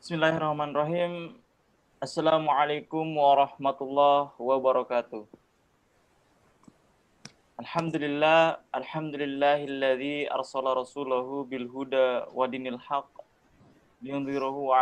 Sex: male